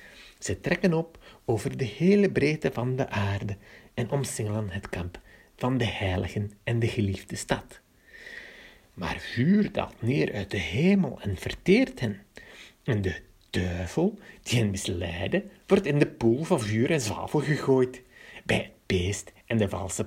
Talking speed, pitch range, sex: 155 wpm, 100-130 Hz, male